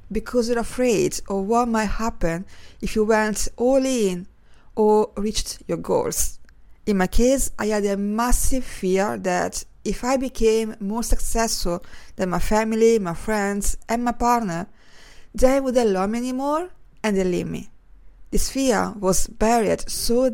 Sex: female